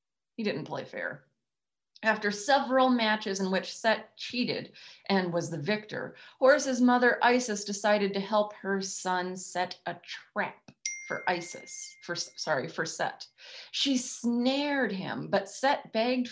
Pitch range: 200-245 Hz